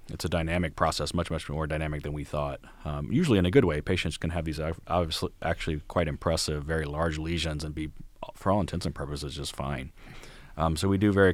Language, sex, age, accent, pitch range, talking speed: English, male, 30-49, American, 75-85 Hz, 230 wpm